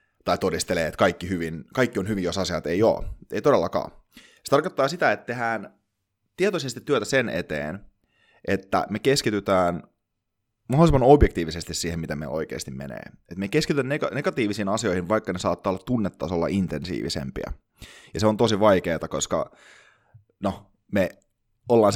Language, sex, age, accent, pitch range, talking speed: Finnish, male, 30-49, native, 90-120 Hz, 150 wpm